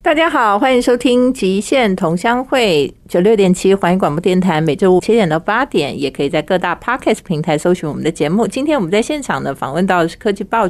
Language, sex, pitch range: Chinese, female, 160-215 Hz